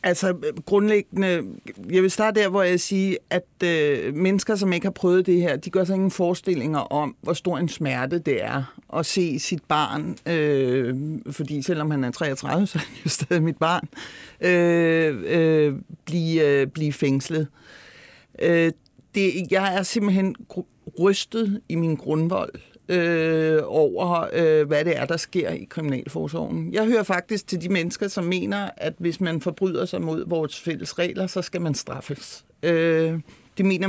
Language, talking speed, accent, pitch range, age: Danish, 165 wpm, native, 155-190 Hz, 60-79